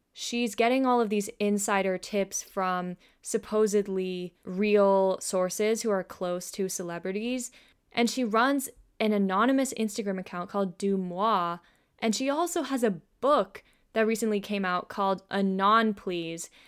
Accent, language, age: American, English, 10-29